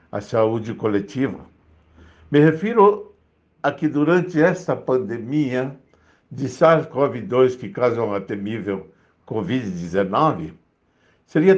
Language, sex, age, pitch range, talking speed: Portuguese, male, 60-79, 100-150 Hz, 95 wpm